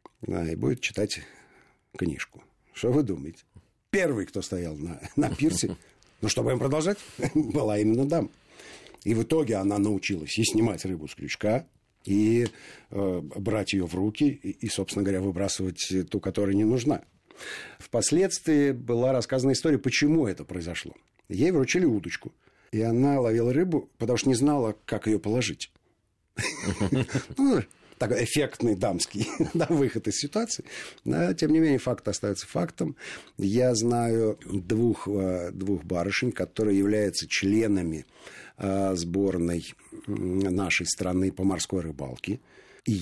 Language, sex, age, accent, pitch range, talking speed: Russian, male, 50-69, native, 95-120 Hz, 135 wpm